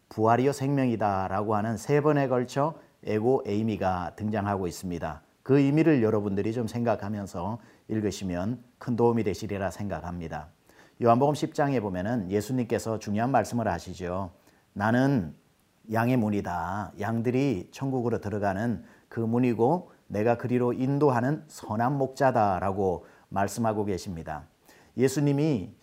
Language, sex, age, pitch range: Korean, male, 40-59, 100-130 Hz